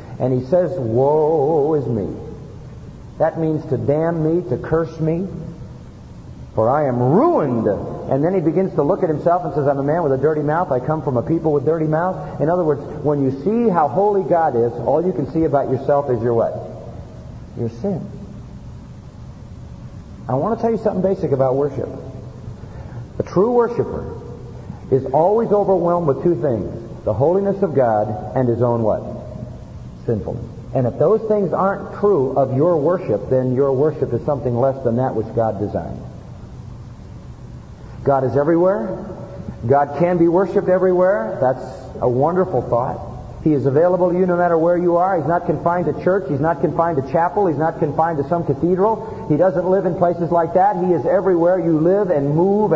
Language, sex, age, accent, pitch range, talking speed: English, male, 50-69, American, 130-180 Hz, 185 wpm